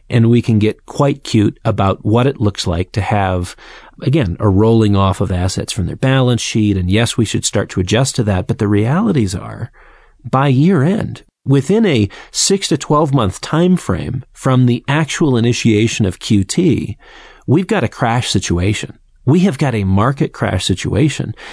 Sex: male